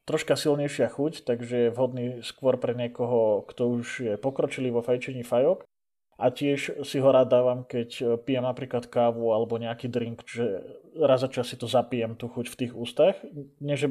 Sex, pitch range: male, 120-140 Hz